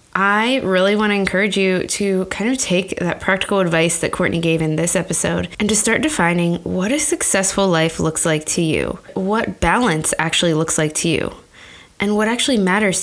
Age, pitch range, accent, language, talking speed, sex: 20-39, 165-205 Hz, American, English, 195 wpm, female